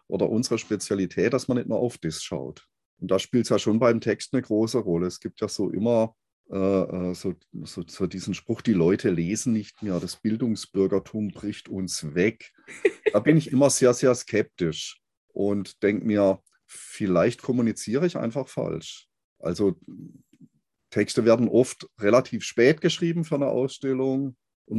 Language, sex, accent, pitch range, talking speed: German, male, German, 95-120 Hz, 160 wpm